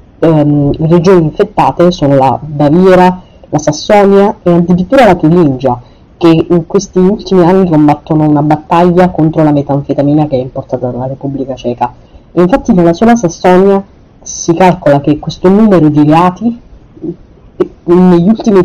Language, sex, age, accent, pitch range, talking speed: Italian, female, 30-49, native, 150-185 Hz, 140 wpm